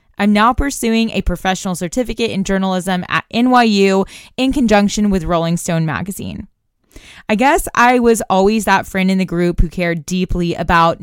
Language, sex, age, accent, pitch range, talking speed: English, female, 20-39, American, 175-225 Hz, 165 wpm